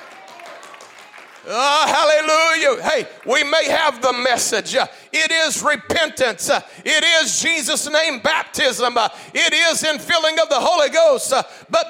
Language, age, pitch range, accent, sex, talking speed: English, 40-59, 275-330 Hz, American, male, 120 wpm